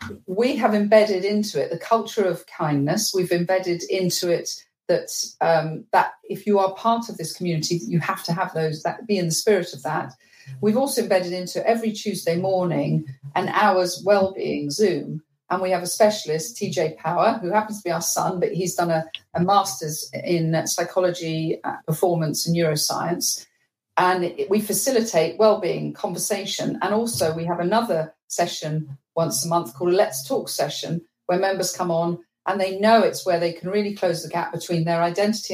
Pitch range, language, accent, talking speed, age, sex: 165-210 Hz, English, British, 190 wpm, 40-59, female